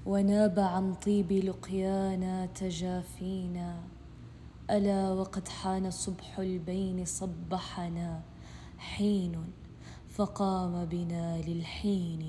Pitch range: 170-195 Hz